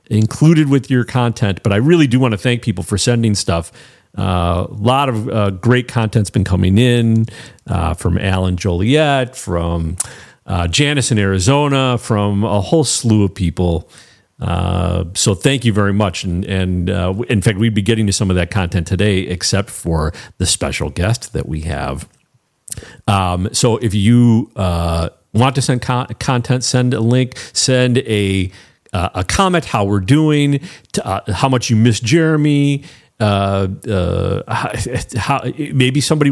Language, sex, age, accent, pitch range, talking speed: English, male, 50-69, American, 95-135 Hz, 165 wpm